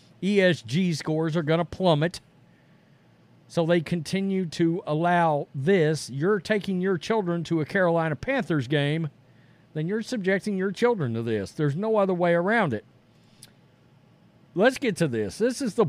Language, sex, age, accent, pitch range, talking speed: English, male, 50-69, American, 155-230 Hz, 155 wpm